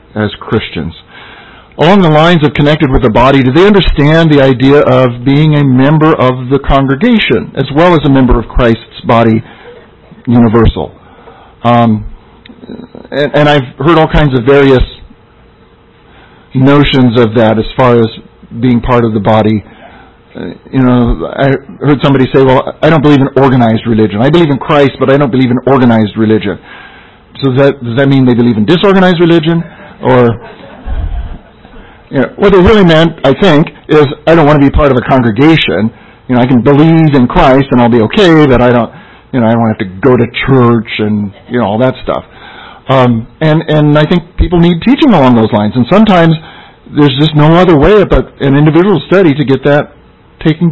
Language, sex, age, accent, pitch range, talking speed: English, male, 50-69, American, 120-155 Hz, 190 wpm